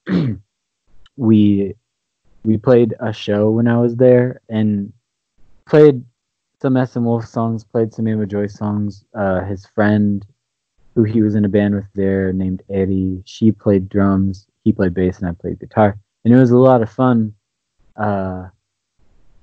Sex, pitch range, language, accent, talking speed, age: male, 100-120 Hz, English, American, 160 wpm, 20-39